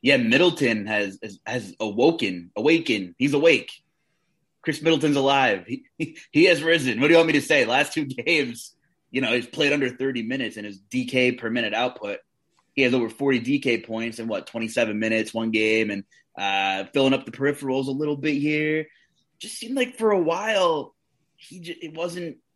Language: English